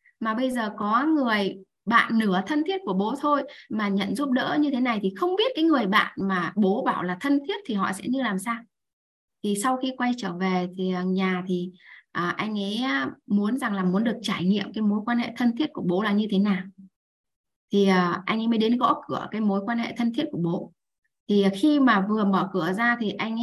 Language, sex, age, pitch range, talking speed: Vietnamese, female, 20-39, 190-245 Hz, 235 wpm